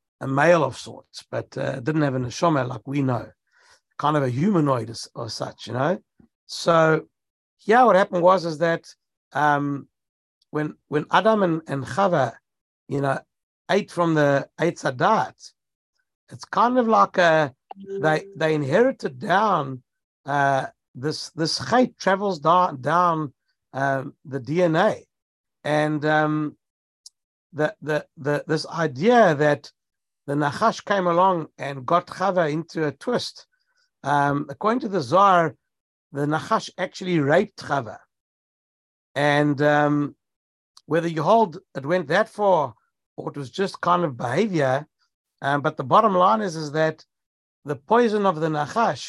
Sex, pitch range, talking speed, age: male, 140-185 Hz, 145 wpm, 60-79